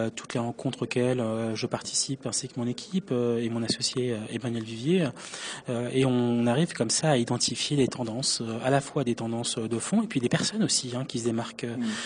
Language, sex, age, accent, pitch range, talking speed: French, male, 20-39, French, 115-140 Hz, 200 wpm